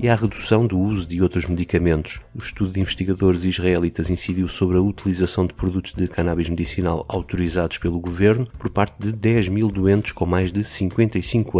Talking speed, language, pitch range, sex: 180 wpm, Portuguese, 85-105 Hz, male